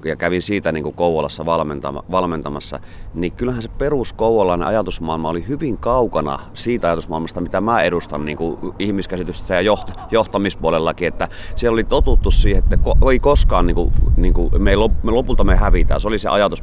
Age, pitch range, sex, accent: 30-49, 85-105 Hz, male, native